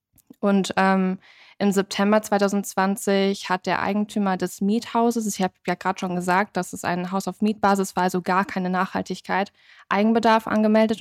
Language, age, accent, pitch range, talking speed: German, 20-39, German, 185-210 Hz, 160 wpm